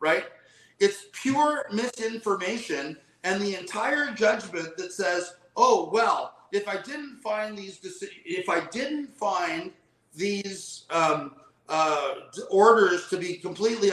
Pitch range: 180-235 Hz